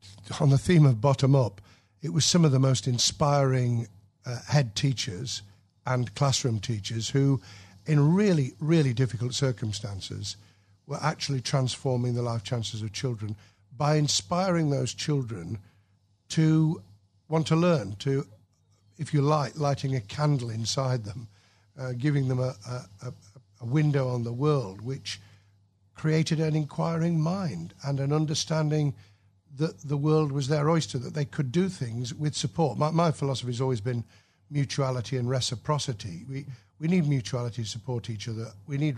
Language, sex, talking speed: English, male, 155 wpm